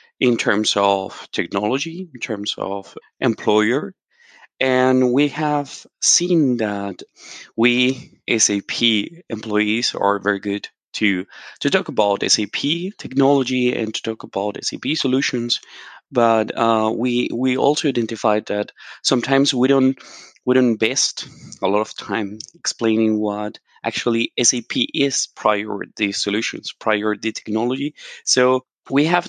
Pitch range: 105-135 Hz